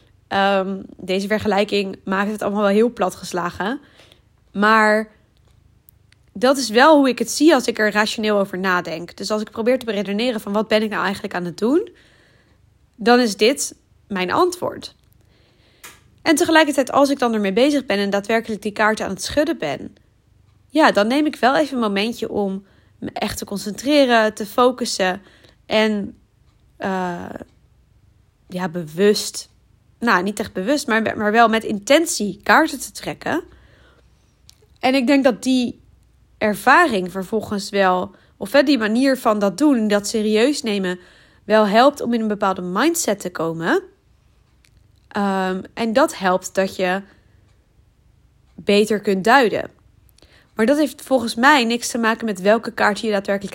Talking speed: 155 wpm